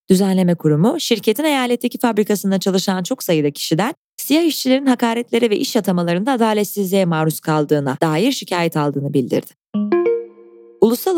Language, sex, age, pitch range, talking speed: Turkish, female, 20-39, 160-225 Hz, 125 wpm